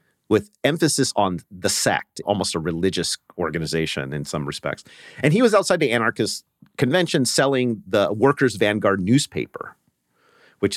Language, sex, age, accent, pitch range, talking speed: English, male, 40-59, American, 95-150 Hz, 140 wpm